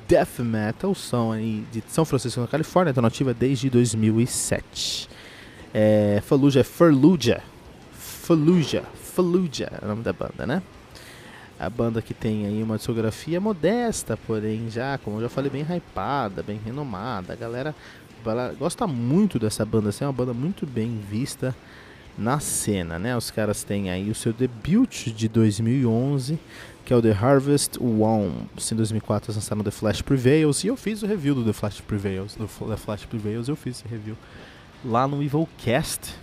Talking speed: 165 wpm